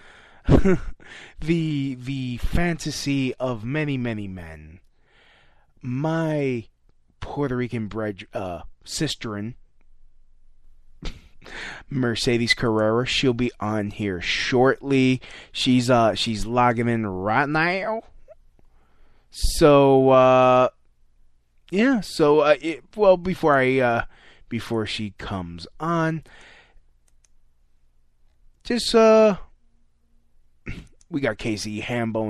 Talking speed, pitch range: 90 wpm, 105-145 Hz